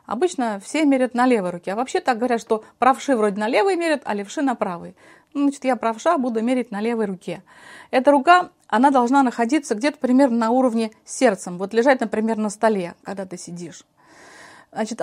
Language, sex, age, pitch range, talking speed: Russian, female, 30-49, 210-265 Hz, 190 wpm